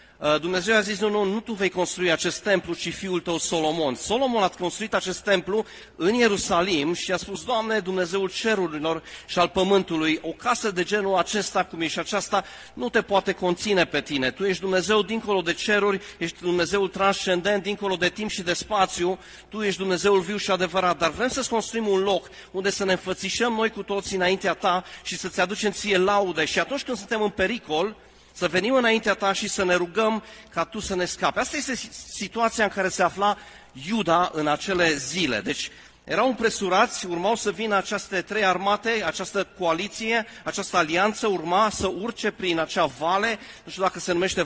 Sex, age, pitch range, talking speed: male, 30-49, 175-210 Hz, 190 wpm